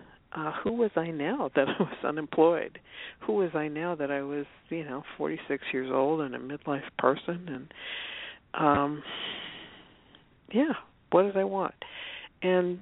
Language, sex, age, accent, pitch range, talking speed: English, female, 60-79, American, 155-210 Hz, 155 wpm